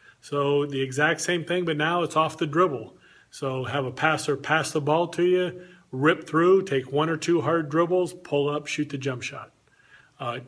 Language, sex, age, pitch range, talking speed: English, male, 40-59, 140-165 Hz, 200 wpm